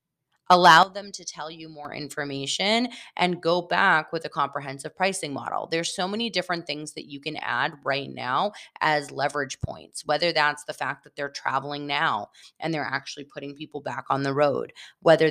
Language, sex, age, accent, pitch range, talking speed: English, female, 20-39, American, 145-190 Hz, 185 wpm